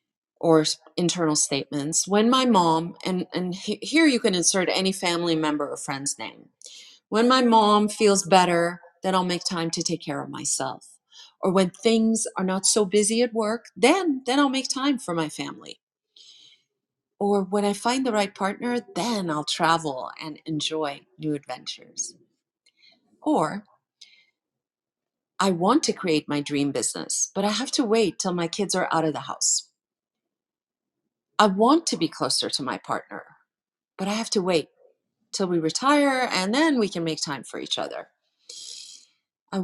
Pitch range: 160-225 Hz